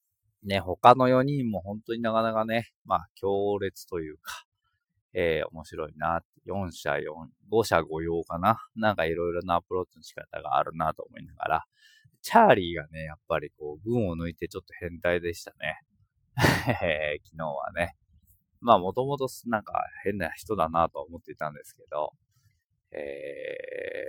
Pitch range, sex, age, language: 85-115 Hz, male, 20-39, Japanese